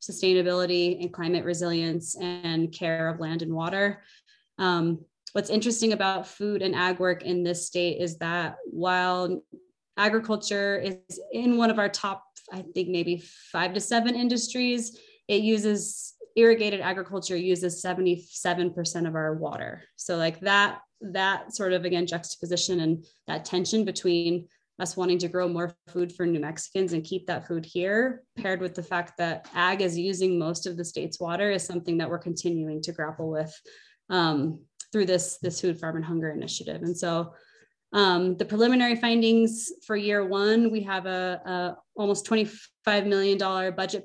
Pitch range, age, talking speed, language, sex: 175-200 Hz, 20-39, 165 wpm, English, female